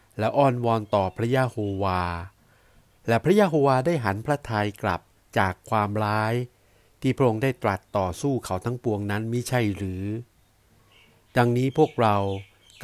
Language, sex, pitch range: Thai, male, 100-120 Hz